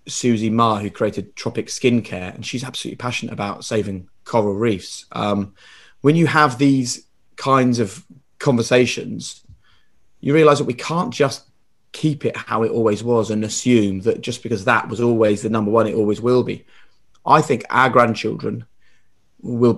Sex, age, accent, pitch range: male, 30-49, British, 110-145 Hz